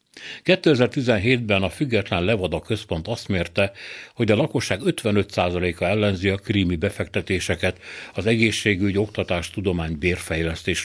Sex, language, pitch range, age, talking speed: male, Hungarian, 90-115 Hz, 60-79, 110 wpm